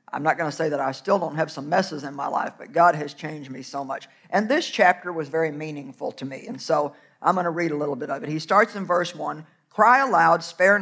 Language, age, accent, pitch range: English, 50-69, American, 165-230 Hz